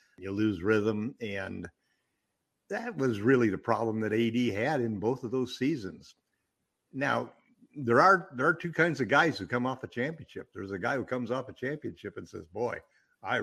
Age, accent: 60-79, American